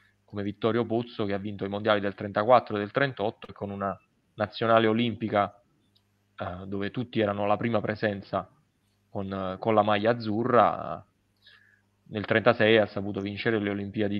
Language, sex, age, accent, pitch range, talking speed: Italian, male, 20-39, native, 100-115 Hz, 150 wpm